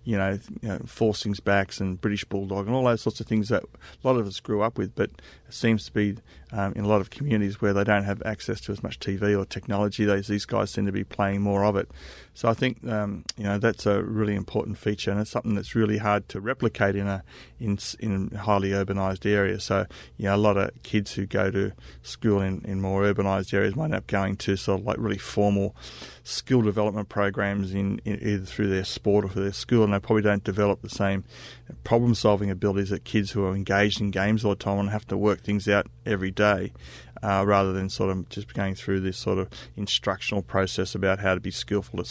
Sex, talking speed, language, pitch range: male, 240 wpm, English, 95-105 Hz